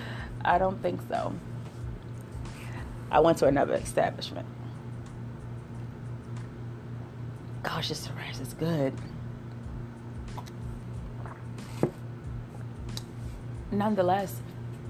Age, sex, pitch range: 30-49, female, 120-165 Hz